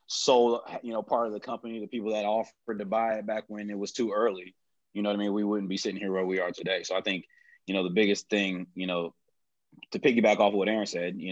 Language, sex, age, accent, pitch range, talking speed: English, male, 20-39, American, 90-105 Hz, 270 wpm